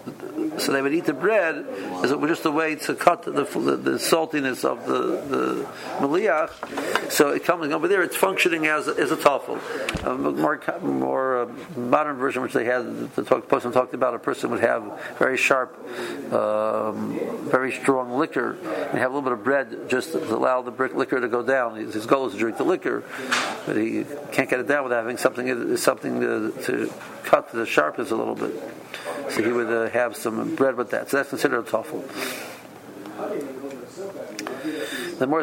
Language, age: English, 60-79